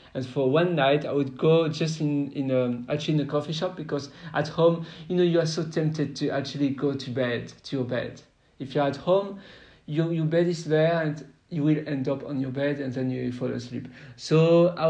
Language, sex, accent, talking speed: English, male, French, 230 wpm